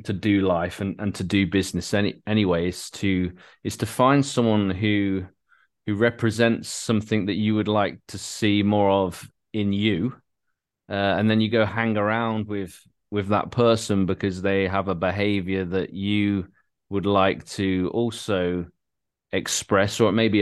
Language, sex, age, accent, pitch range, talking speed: English, male, 30-49, British, 95-110 Hz, 160 wpm